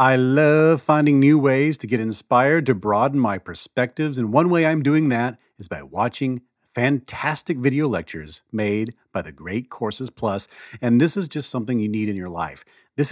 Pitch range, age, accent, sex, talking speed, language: 105-140 Hz, 40-59, American, male, 190 wpm, English